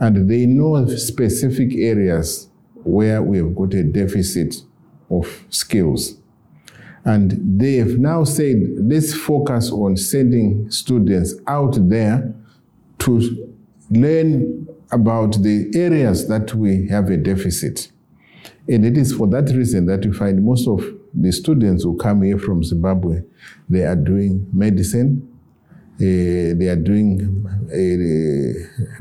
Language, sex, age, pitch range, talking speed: English, male, 50-69, 95-120 Hz, 125 wpm